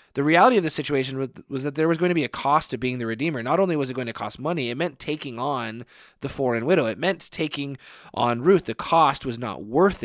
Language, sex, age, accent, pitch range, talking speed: English, male, 20-39, American, 120-155 Hz, 265 wpm